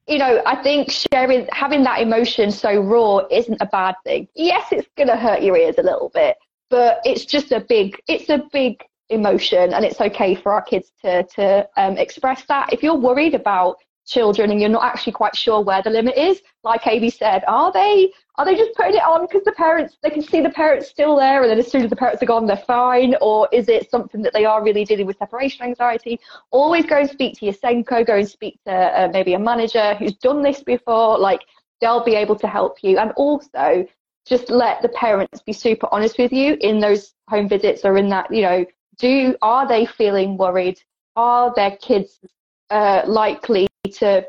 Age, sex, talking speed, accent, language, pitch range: 30-49, female, 215 wpm, British, English, 200-275 Hz